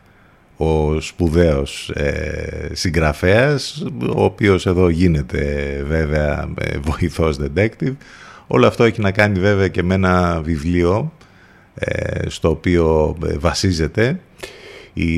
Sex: male